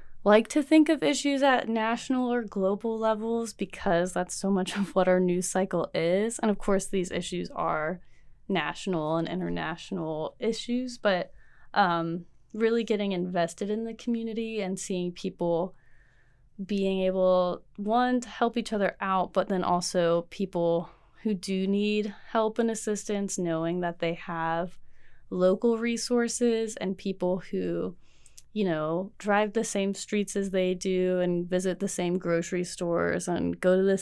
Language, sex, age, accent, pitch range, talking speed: English, female, 20-39, American, 175-210 Hz, 155 wpm